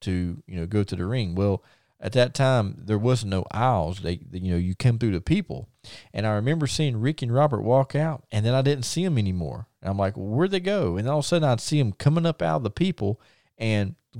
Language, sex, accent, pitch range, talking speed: English, male, American, 95-125 Hz, 260 wpm